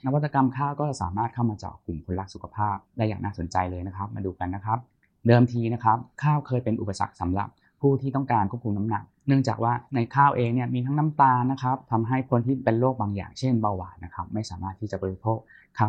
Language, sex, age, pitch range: Thai, male, 20-39, 95-120 Hz